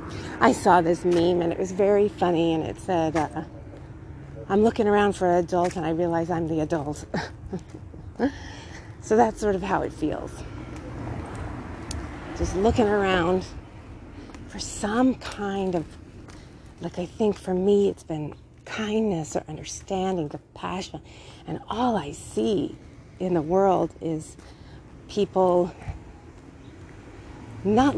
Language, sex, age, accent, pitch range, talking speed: English, female, 40-59, American, 160-200 Hz, 130 wpm